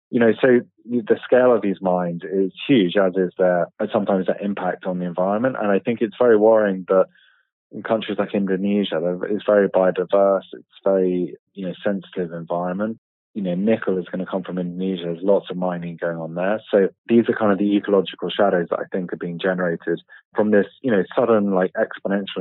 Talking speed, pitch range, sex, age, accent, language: 200 wpm, 95-110 Hz, male, 20-39, British, English